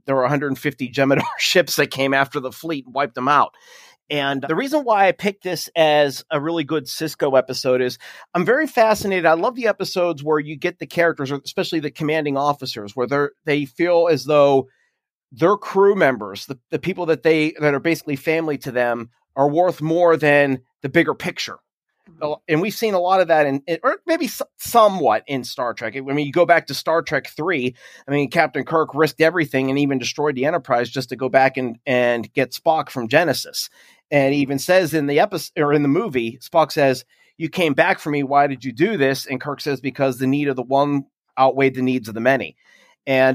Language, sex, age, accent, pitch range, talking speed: English, male, 30-49, American, 135-170 Hz, 210 wpm